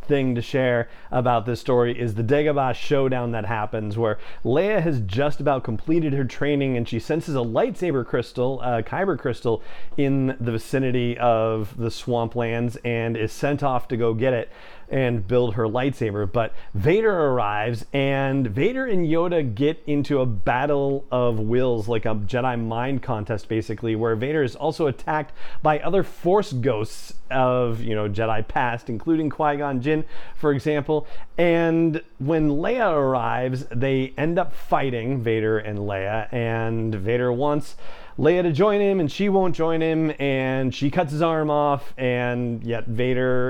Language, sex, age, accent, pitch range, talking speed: English, male, 40-59, American, 115-155 Hz, 160 wpm